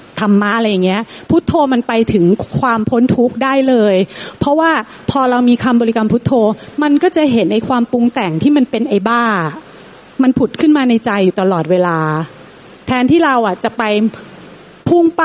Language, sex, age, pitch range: Thai, female, 30-49, 215-265 Hz